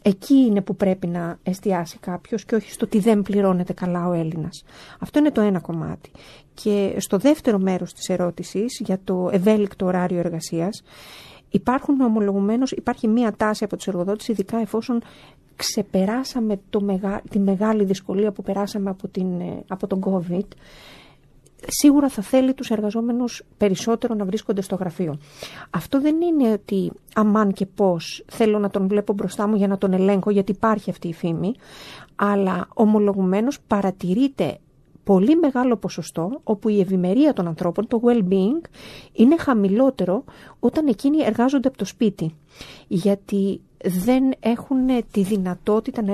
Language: Greek